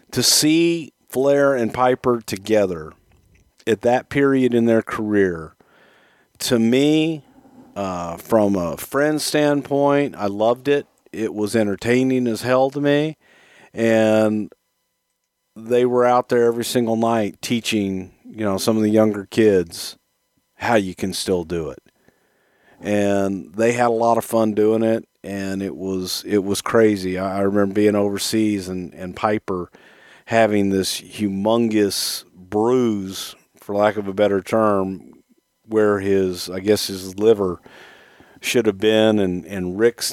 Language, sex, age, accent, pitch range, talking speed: English, male, 50-69, American, 95-120 Hz, 140 wpm